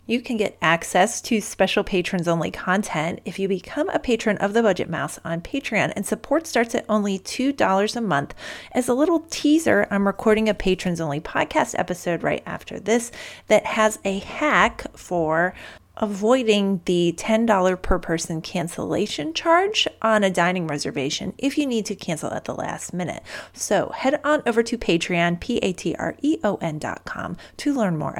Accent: American